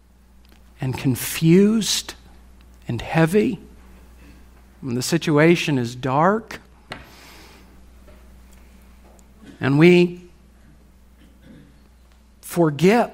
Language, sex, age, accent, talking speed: English, male, 50-69, American, 55 wpm